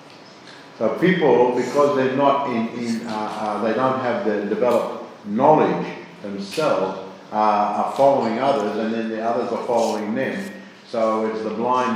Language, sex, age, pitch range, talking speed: English, male, 50-69, 100-115 Hz, 155 wpm